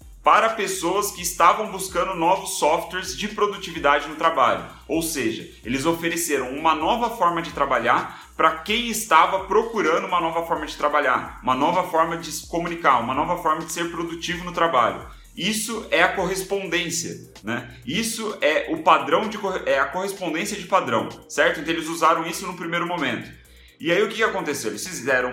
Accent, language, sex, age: Brazilian, Portuguese, male, 30-49